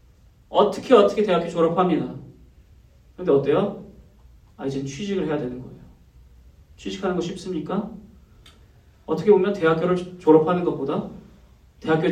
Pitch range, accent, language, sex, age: 150-215 Hz, native, Korean, male, 30-49